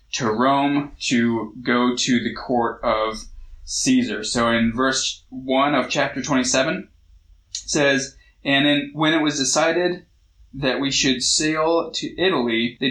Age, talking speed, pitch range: 20-39, 145 wpm, 120-145 Hz